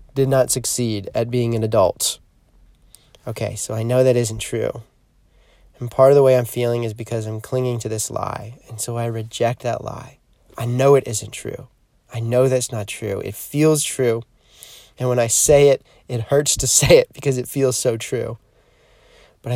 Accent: American